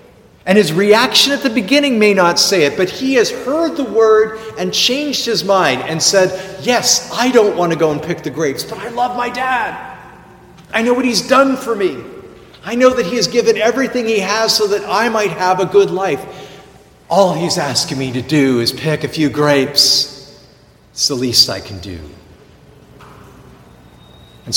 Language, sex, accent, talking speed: English, male, American, 195 wpm